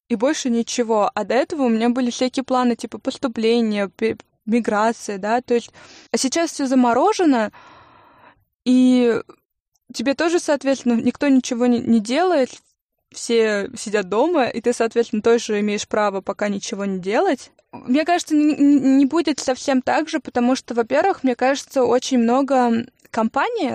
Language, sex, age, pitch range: Russian, female, 20-39, 225-270 Hz